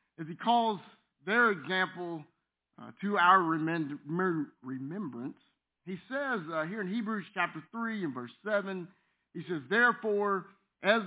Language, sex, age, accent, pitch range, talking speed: English, male, 50-69, American, 155-200 Hz, 130 wpm